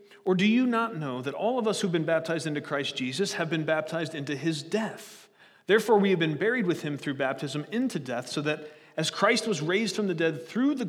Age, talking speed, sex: 30-49, 235 wpm, male